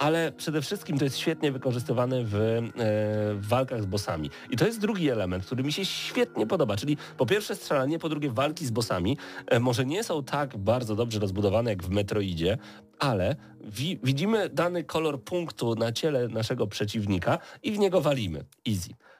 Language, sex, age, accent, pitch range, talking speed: Polish, male, 40-59, native, 110-140 Hz, 180 wpm